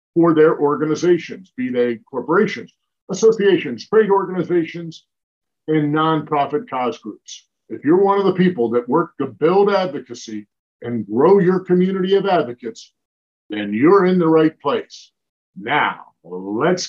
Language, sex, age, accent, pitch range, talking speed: English, male, 50-69, American, 145-180 Hz, 135 wpm